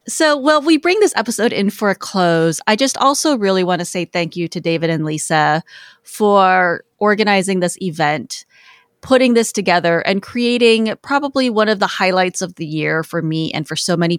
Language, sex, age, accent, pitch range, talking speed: English, female, 30-49, American, 175-220 Hz, 200 wpm